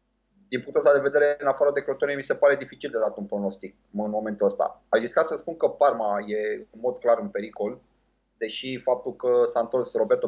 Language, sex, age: Romanian, male, 20-39